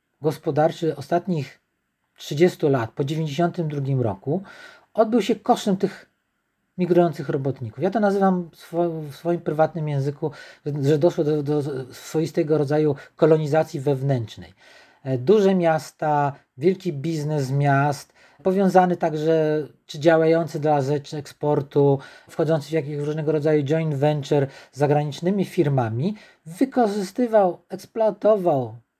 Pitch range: 150-185 Hz